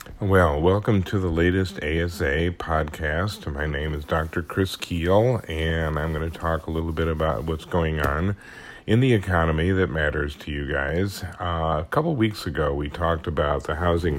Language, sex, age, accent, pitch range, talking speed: English, male, 50-69, American, 75-85 Hz, 185 wpm